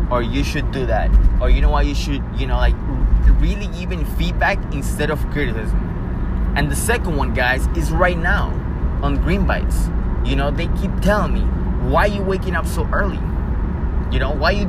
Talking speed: 200 wpm